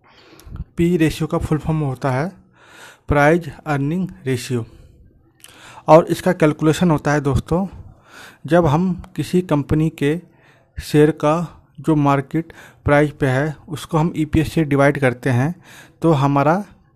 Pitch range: 140-170 Hz